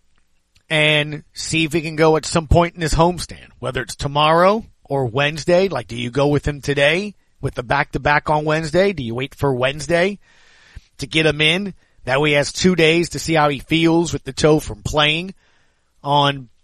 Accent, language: American, English